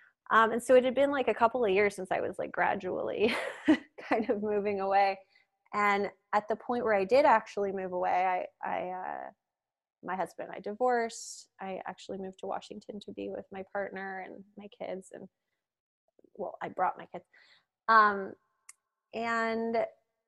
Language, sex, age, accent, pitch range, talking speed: English, female, 20-39, American, 190-250 Hz, 175 wpm